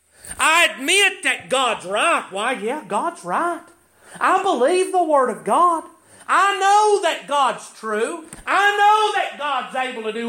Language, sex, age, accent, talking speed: English, male, 40-59, American, 155 wpm